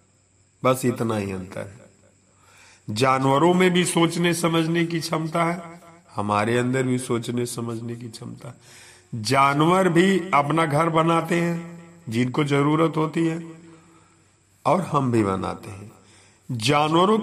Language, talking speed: Hindi, 125 wpm